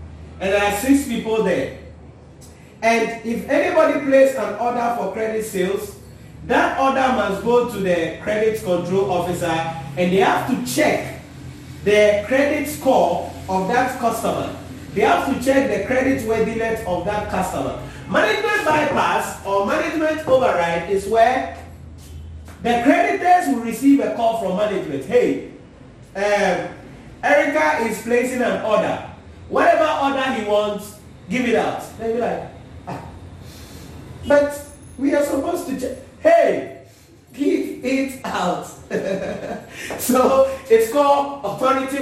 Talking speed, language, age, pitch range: 130 wpm, English, 40-59, 180-265 Hz